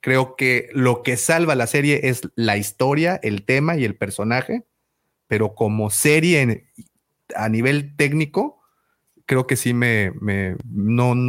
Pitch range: 115-150 Hz